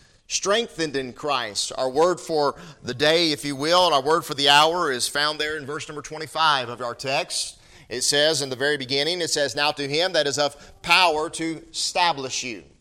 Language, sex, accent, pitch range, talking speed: English, male, American, 135-165 Hz, 210 wpm